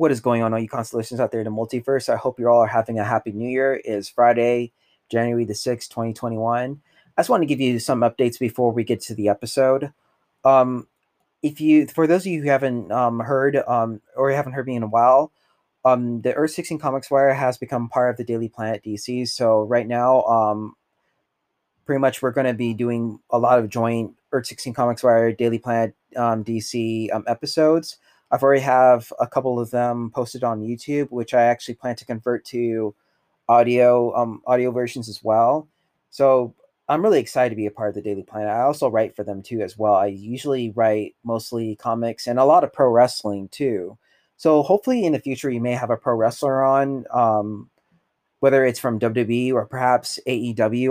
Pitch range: 115-130 Hz